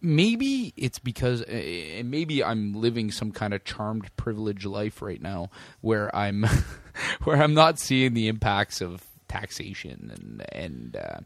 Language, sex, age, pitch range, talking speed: English, male, 20-39, 100-130 Hz, 140 wpm